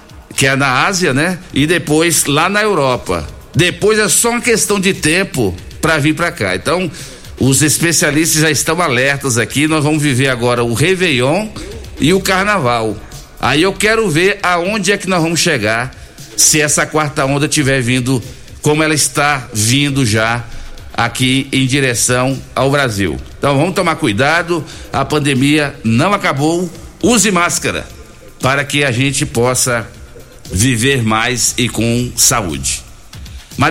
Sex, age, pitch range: male, 60-79, 125-160 Hz